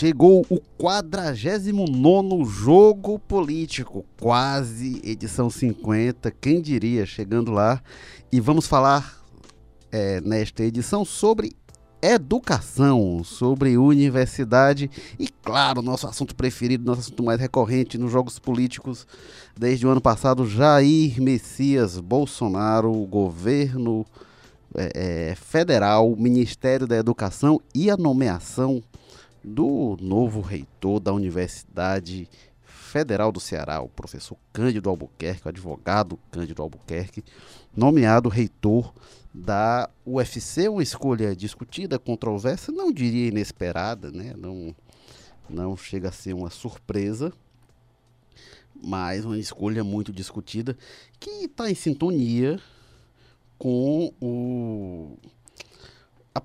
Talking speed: 105 wpm